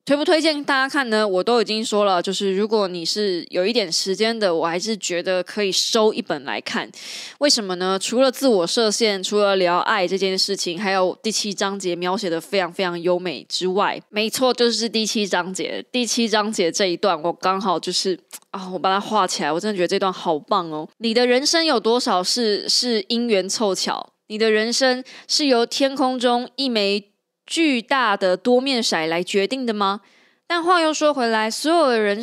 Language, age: Chinese, 20-39